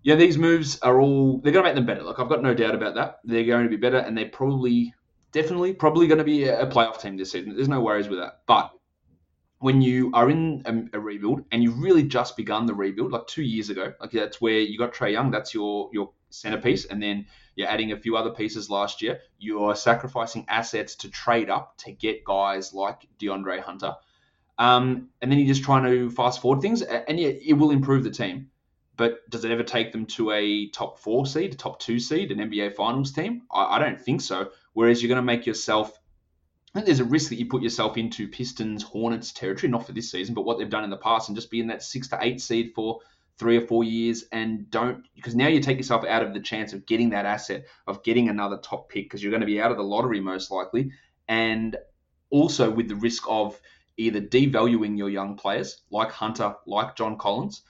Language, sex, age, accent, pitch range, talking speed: English, male, 20-39, Australian, 105-125 Hz, 235 wpm